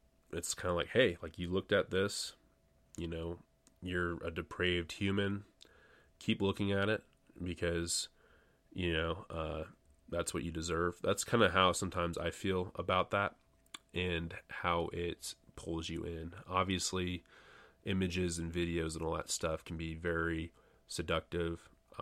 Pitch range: 80-90 Hz